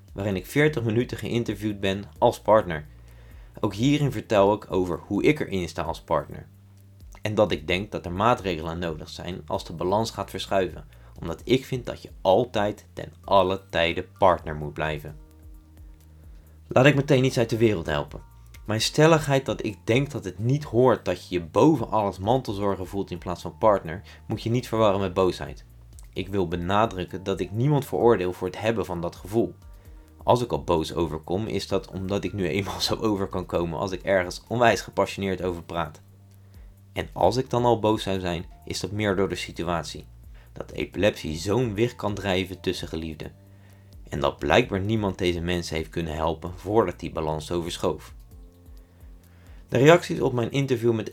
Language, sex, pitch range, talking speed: Dutch, male, 85-110 Hz, 180 wpm